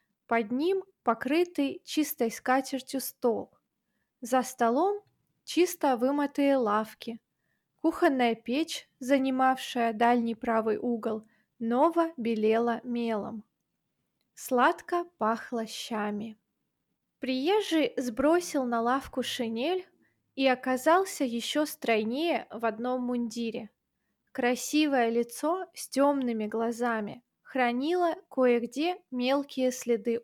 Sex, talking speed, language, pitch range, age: female, 85 wpm, Russian, 230-290 Hz, 20-39